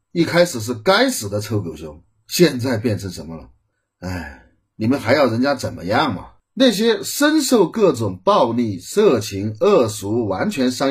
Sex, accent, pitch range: male, native, 100-165 Hz